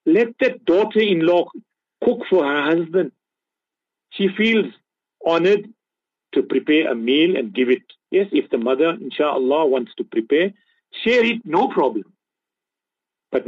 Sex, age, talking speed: male, 50-69, 135 wpm